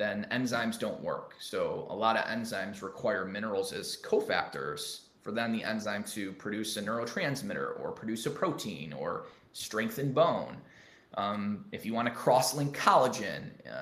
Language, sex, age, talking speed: English, male, 20-39, 155 wpm